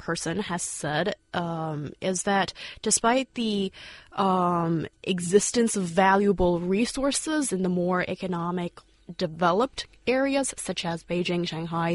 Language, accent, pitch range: Chinese, American, 180-230 Hz